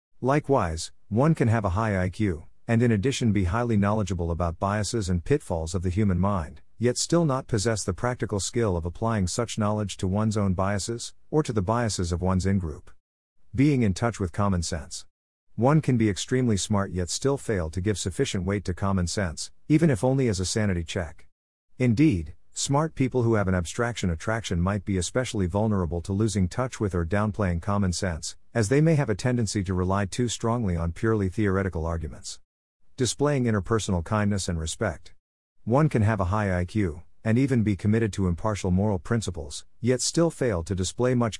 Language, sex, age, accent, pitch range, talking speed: English, male, 50-69, American, 90-115 Hz, 190 wpm